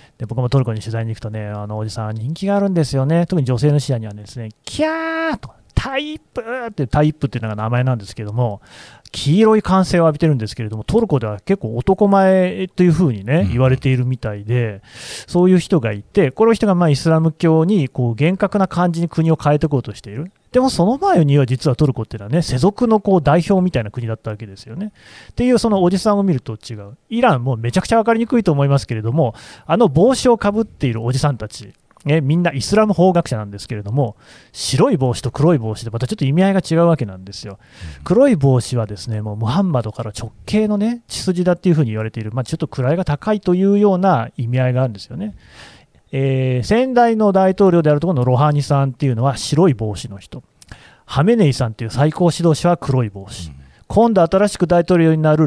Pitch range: 120-185 Hz